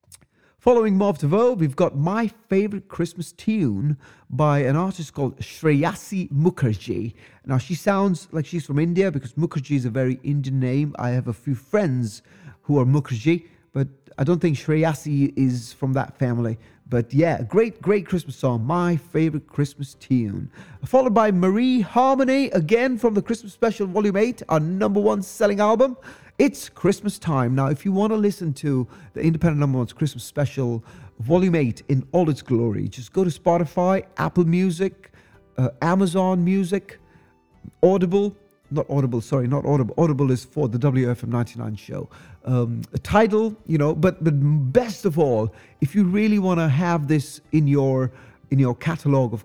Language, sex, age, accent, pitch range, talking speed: English, male, 30-49, British, 130-190 Hz, 170 wpm